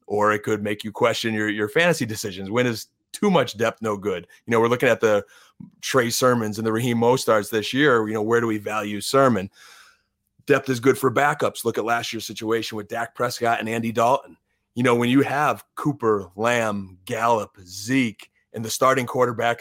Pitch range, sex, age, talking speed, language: 110-130 Hz, male, 30-49, 205 wpm, English